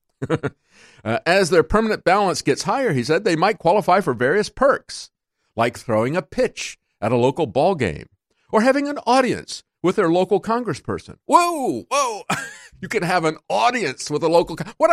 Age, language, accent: 50-69, English, American